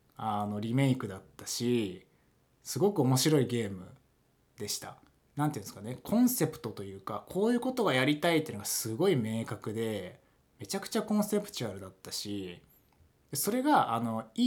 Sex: male